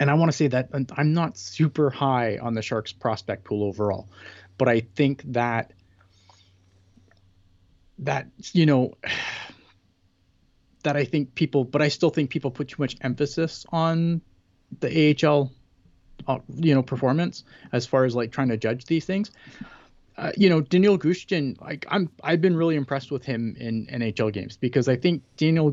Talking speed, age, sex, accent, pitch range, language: 170 wpm, 30-49, male, American, 105-145 Hz, English